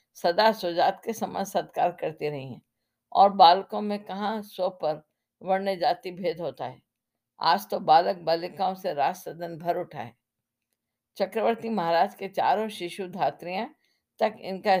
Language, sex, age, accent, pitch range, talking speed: Hindi, female, 50-69, native, 180-215 Hz, 145 wpm